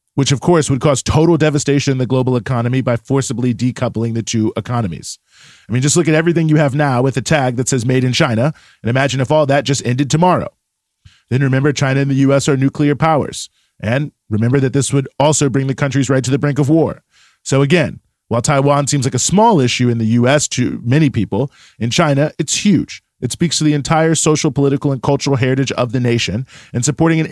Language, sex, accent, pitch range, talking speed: English, male, American, 125-150 Hz, 220 wpm